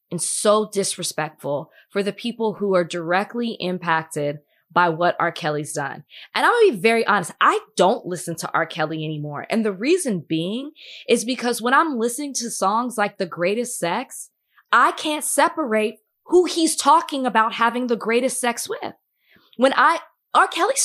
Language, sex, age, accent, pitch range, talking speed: English, female, 20-39, American, 185-270 Hz, 170 wpm